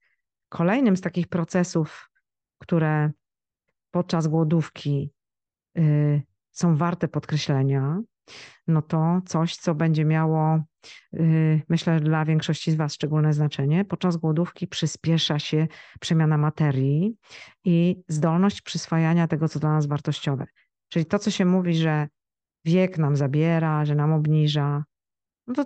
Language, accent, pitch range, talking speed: Polish, native, 155-180 Hz, 120 wpm